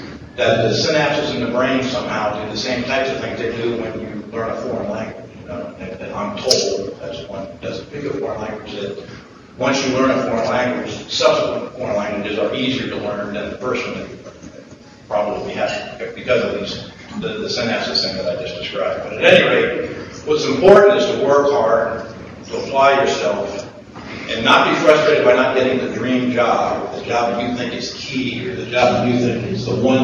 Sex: male